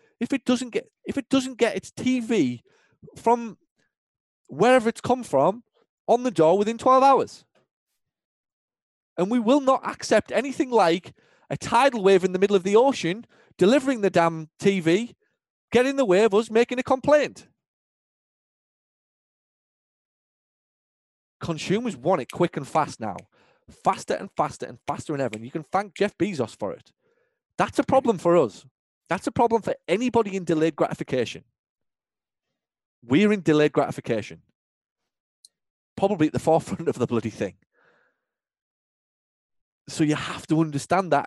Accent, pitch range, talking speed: British, 150-230 Hz, 150 wpm